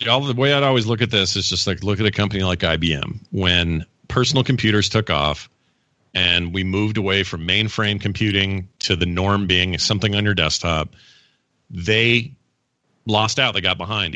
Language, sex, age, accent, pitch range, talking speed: English, male, 40-59, American, 100-125 Hz, 180 wpm